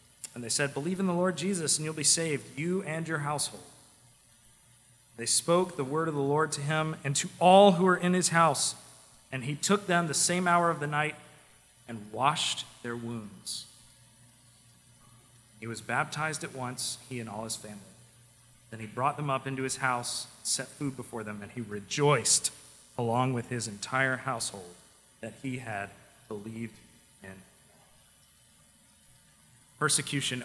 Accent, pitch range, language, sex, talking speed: American, 120-155 Hz, English, male, 165 wpm